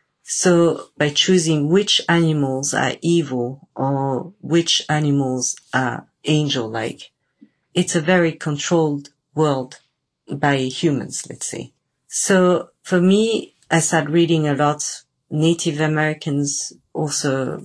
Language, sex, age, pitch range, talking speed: Italian, female, 40-59, 140-165 Hz, 110 wpm